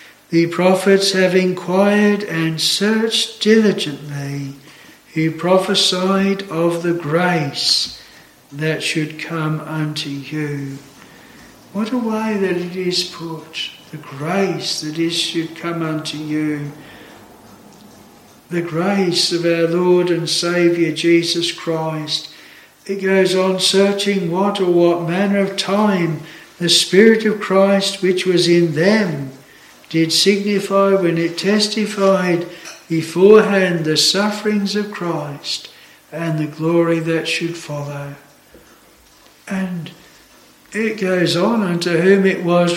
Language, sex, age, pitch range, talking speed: English, male, 60-79, 160-195 Hz, 115 wpm